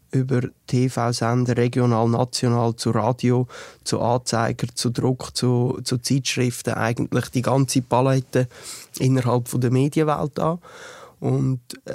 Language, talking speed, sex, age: German, 110 wpm, male, 20-39